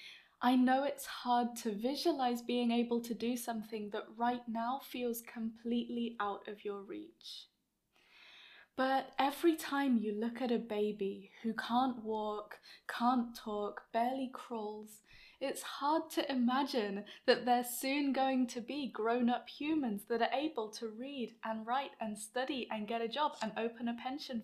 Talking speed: 155 wpm